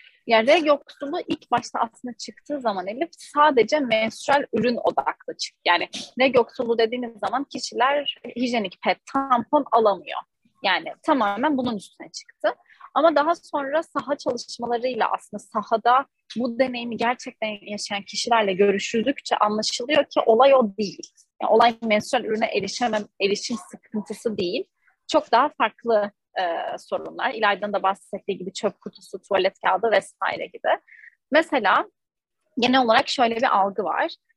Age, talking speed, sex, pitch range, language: 30-49, 135 wpm, female, 210-270 Hz, Turkish